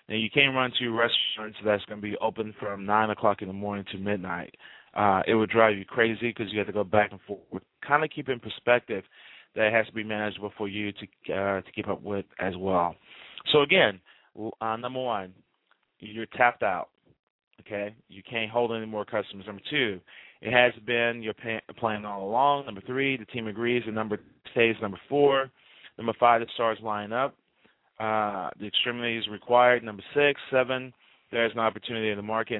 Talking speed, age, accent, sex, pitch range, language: 200 wpm, 30-49, American, male, 105-125 Hz, English